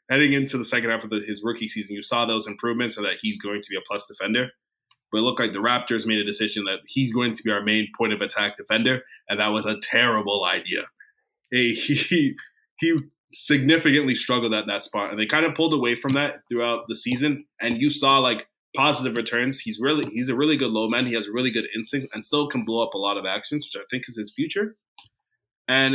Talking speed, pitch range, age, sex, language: 240 wpm, 110-145 Hz, 20-39, male, English